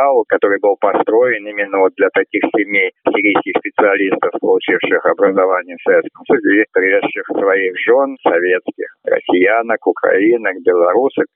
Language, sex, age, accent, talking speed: Russian, male, 50-69, native, 115 wpm